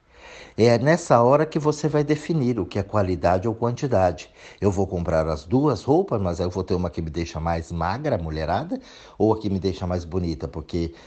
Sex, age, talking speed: male, 50-69, 205 wpm